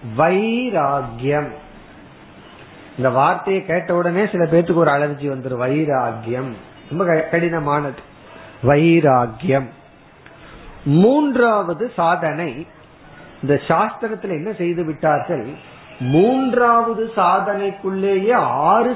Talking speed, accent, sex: 75 wpm, native, male